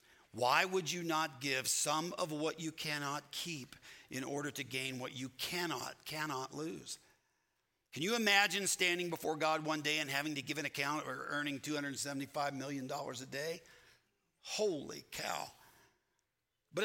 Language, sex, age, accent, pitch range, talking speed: English, male, 50-69, American, 140-180 Hz, 155 wpm